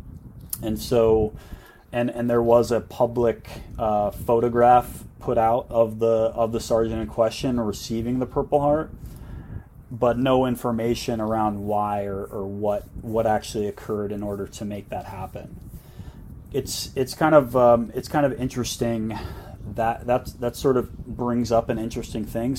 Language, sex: English, male